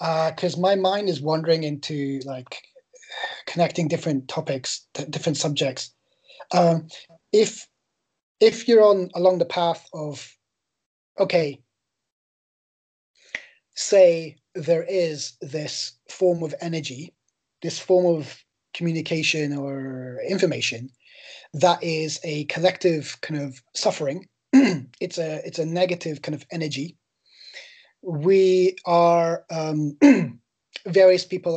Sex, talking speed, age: male, 110 wpm, 20-39